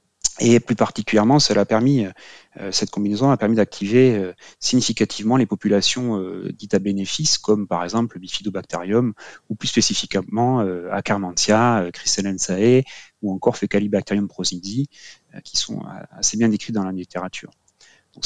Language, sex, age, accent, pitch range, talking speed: French, male, 30-49, French, 95-120 Hz, 120 wpm